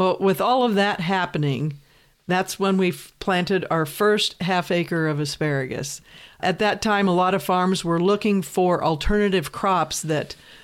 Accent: American